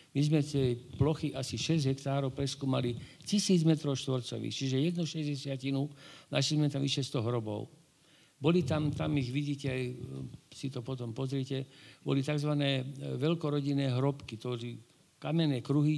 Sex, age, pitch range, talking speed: male, 60-79, 125-150 Hz, 125 wpm